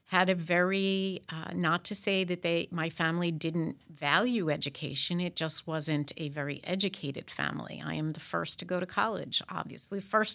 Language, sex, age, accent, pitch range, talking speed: English, female, 50-69, American, 165-200 Hz, 180 wpm